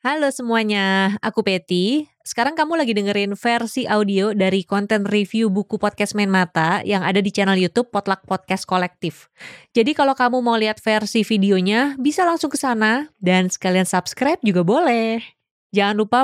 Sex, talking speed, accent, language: female, 160 wpm, native, Indonesian